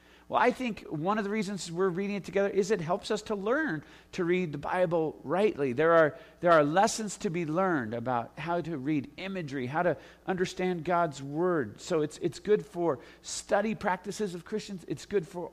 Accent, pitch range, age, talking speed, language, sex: American, 150-200 Hz, 50-69, 200 wpm, English, male